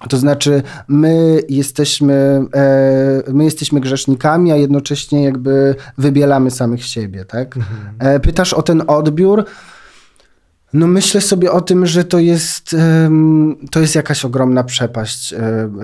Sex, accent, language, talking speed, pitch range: male, native, Polish, 115 wpm, 120-145 Hz